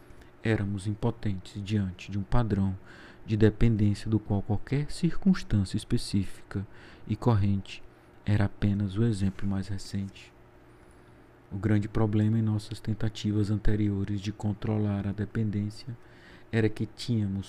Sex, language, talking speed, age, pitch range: male, Portuguese, 120 wpm, 40-59, 100-115 Hz